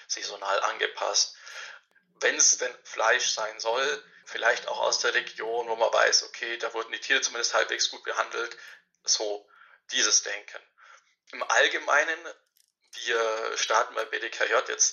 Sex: male